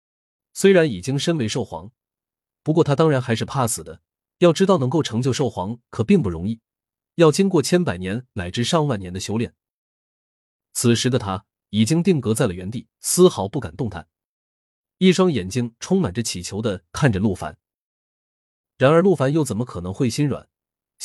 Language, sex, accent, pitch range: Chinese, male, native, 100-160 Hz